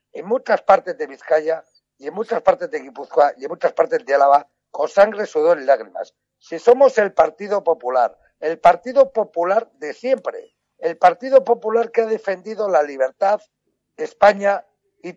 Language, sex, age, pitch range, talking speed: Spanish, male, 60-79, 180-275 Hz, 170 wpm